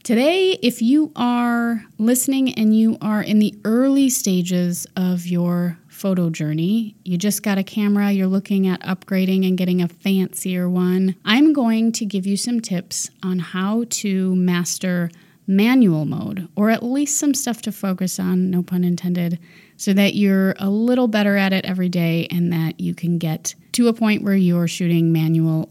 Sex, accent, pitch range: female, American, 175-205 Hz